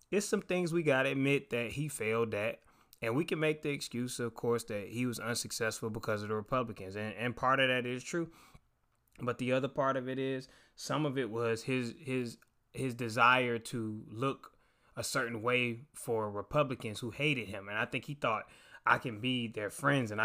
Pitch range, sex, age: 115-145 Hz, male, 20-39